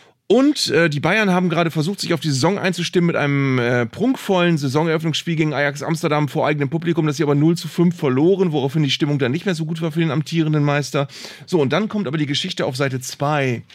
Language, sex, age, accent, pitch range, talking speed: German, male, 30-49, German, 145-185 Hz, 230 wpm